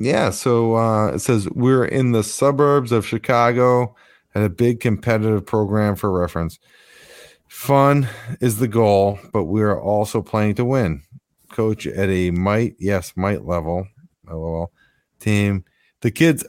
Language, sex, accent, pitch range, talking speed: English, male, American, 95-120 Hz, 145 wpm